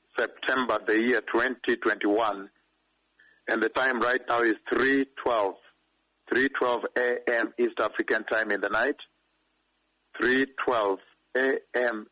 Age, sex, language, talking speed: 50-69, male, English, 100 wpm